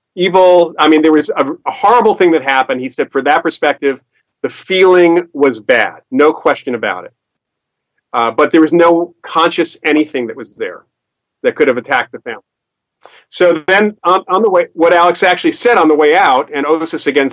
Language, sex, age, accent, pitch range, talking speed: English, male, 40-59, American, 135-175 Hz, 195 wpm